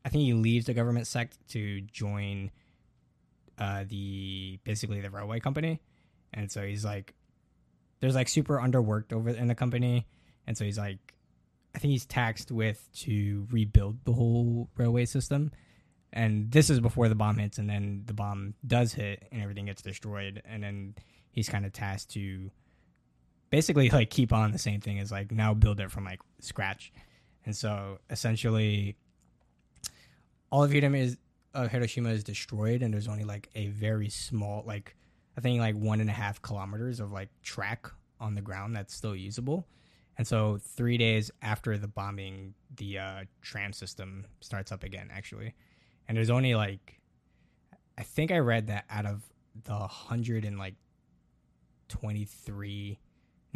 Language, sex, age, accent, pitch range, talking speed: English, male, 10-29, American, 100-120 Hz, 165 wpm